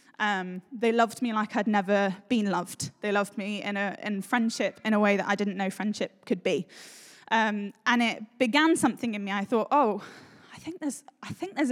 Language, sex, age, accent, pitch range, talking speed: English, female, 10-29, British, 205-250 Hz, 215 wpm